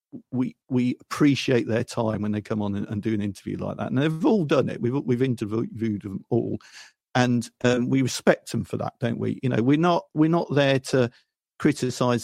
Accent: British